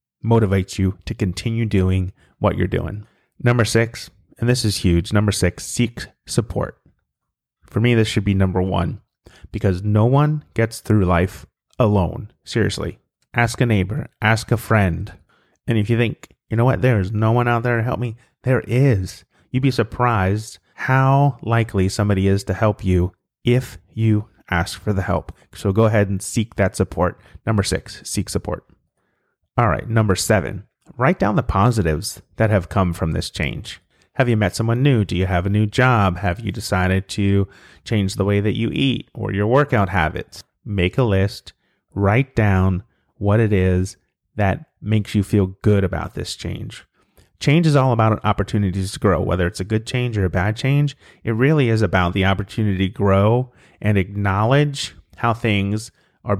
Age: 30-49